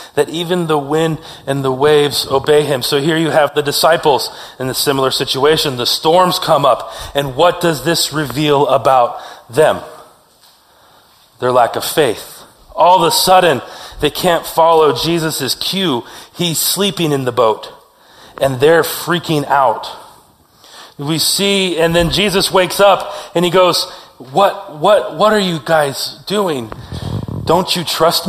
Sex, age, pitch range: male, 30-49, 140-170 Hz